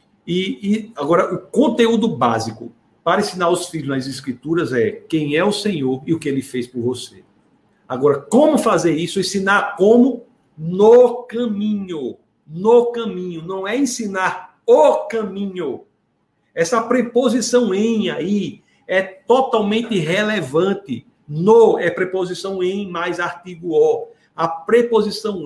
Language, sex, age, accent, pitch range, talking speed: Portuguese, male, 50-69, Brazilian, 170-230 Hz, 130 wpm